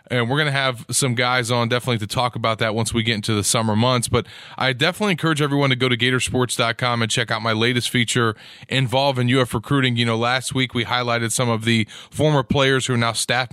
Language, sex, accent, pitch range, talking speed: English, male, American, 120-140 Hz, 240 wpm